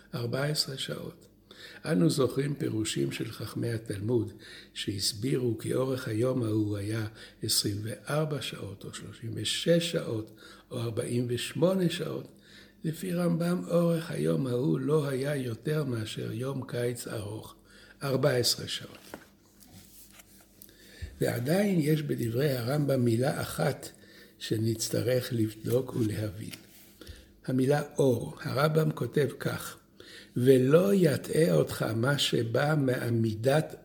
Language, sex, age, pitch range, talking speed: Hebrew, male, 60-79, 115-150 Hz, 100 wpm